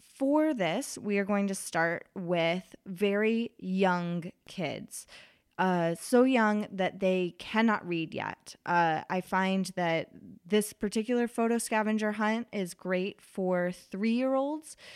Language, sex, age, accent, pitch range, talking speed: English, female, 20-39, American, 180-225 Hz, 130 wpm